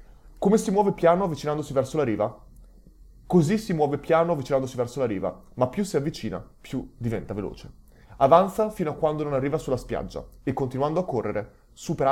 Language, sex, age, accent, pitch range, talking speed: Italian, male, 20-39, native, 110-145 Hz, 180 wpm